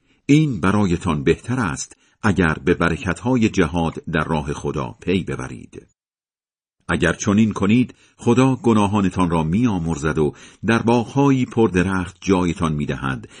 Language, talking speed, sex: Persian, 115 wpm, male